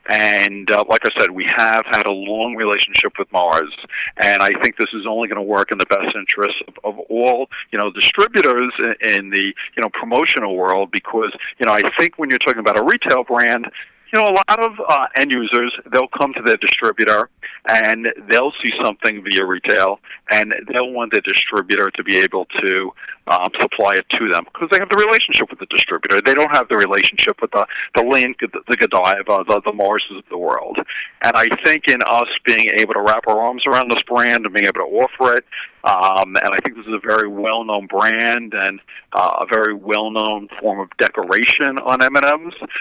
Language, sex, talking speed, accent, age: English, male, 210 wpm, American, 50-69